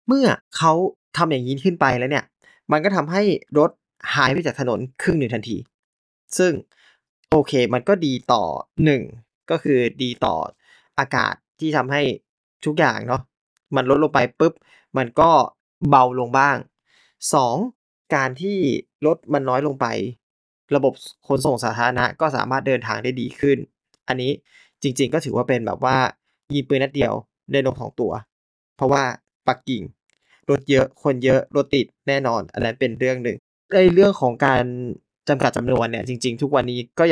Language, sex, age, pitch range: Thai, male, 20-39, 125-150 Hz